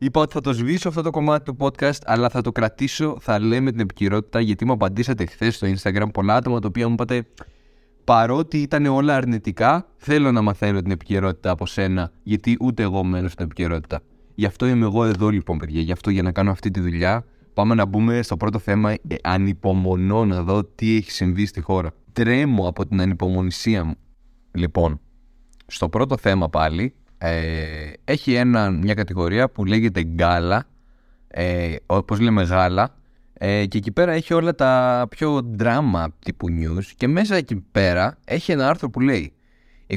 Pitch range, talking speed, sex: 90-125 Hz, 180 wpm, male